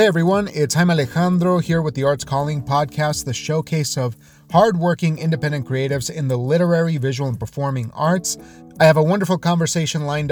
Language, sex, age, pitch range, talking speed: English, male, 30-49, 130-165 Hz, 175 wpm